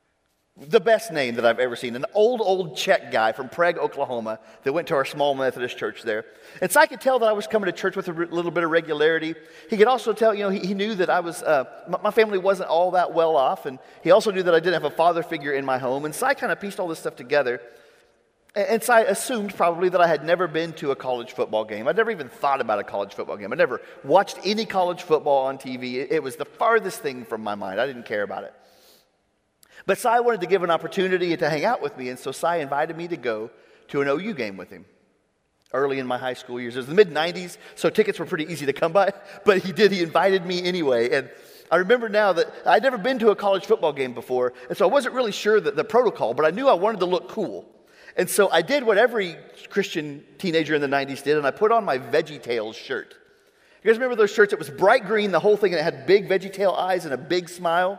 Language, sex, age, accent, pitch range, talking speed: English, male, 40-59, American, 150-215 Hz, 265 wpm